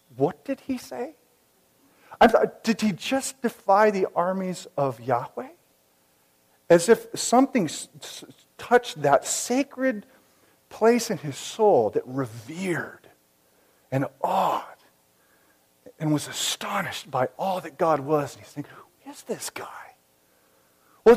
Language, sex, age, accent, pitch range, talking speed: English, male, 40-59, American, 155-230 Hz, 120 wpm